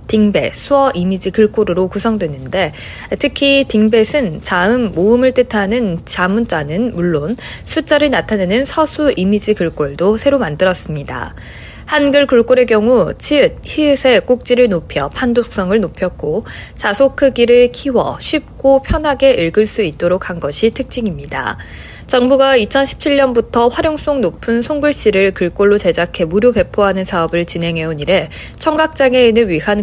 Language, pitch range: Korean, 175-255 Hz